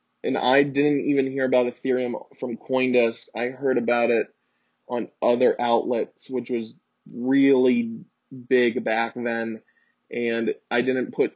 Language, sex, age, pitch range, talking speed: English, male, 20-39, 115-130 Hz, 135 wpm